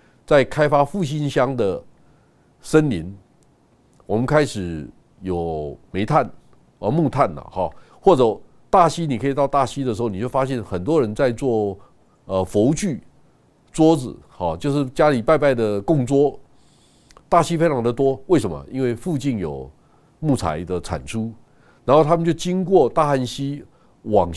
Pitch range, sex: 100-145 Hz, male